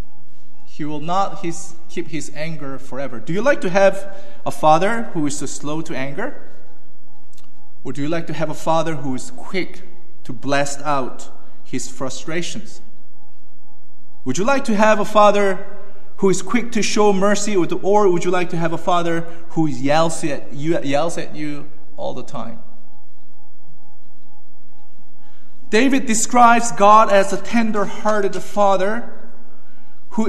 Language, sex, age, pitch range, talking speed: English, male, 30-49, 145-200 Hz, 145 wpm